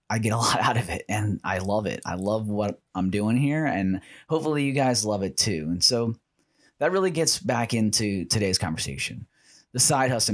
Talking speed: 210 wpm